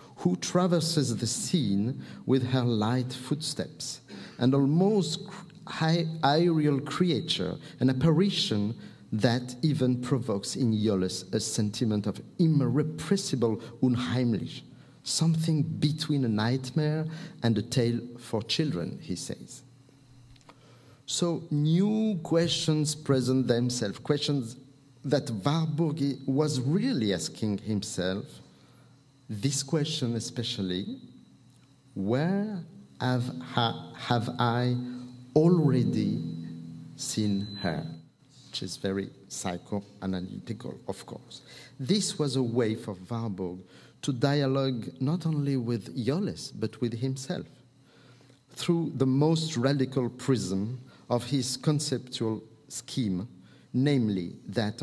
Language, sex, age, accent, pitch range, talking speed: English, male, 50-69, French, 110-150 Hz, 100 wpm